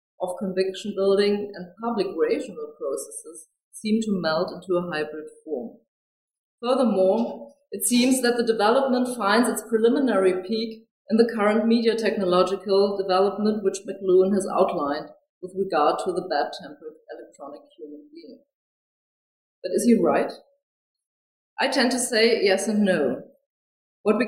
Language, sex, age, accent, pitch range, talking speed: English, female, 30-49, German, 180-225 Hz, 140 wpm